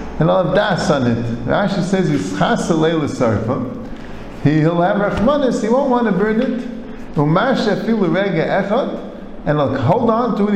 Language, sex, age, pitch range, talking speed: English, male, 50-69, 165-245 Hz, 180 wpm